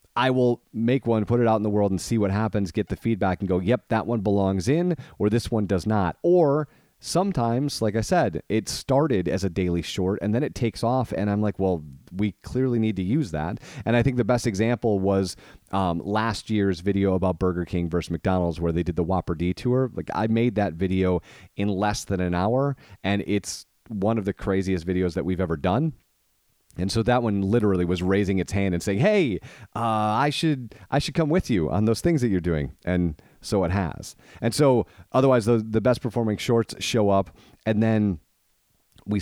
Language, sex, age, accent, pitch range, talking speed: English, male, 30-49, American, 95-115 Hz, 215 wpm